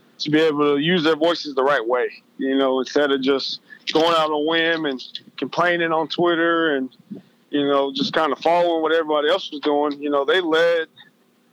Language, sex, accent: English, male, American